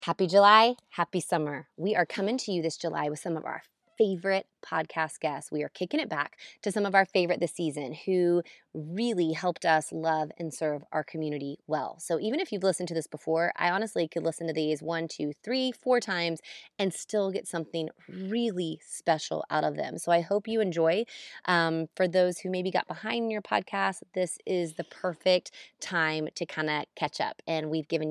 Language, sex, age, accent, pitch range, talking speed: English, female, 20-39, American, 165-210 Hz, 205 wpm